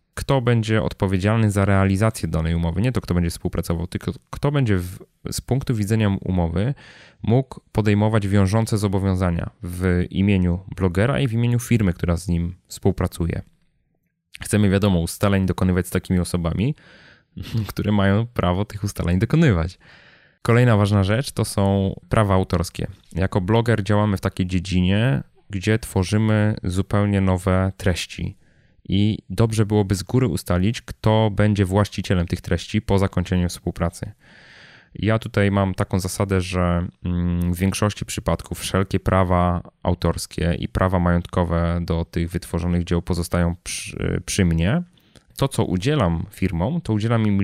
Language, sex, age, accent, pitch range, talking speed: Polish, male, 20-39, native, 90-110 Hz, 140 wpm